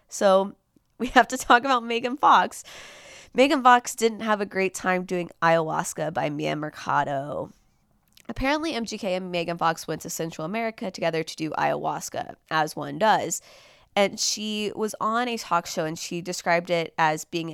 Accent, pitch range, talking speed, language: American, 170-220 Hz, 170 wpm, English